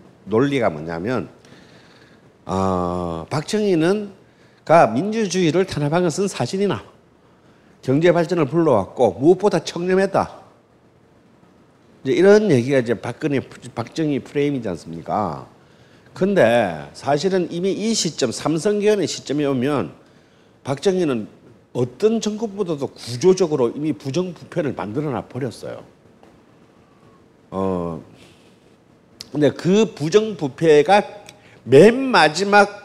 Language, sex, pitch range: Korean, male, 125-190 Hz